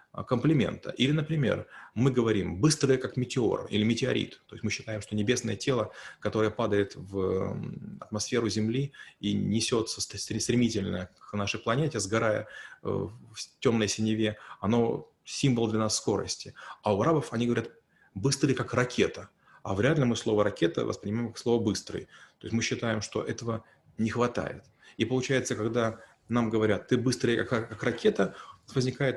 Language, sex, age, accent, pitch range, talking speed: Russian, male, 30-49, native, 110-130 Hz, 150 wpm